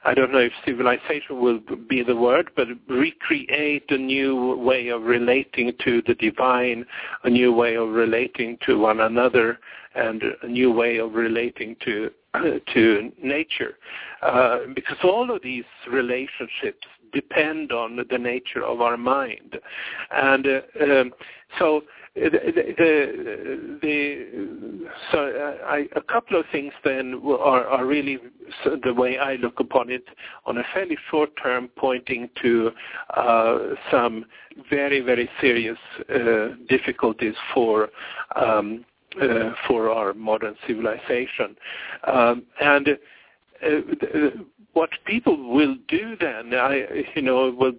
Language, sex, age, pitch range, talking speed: English, male, 50-69, 120-145 Hz, 135 wpm